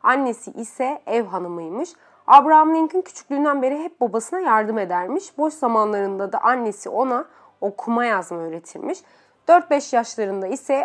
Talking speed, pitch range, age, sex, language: 125 wpm, 220-300 Hz, 30-49, female, Turkish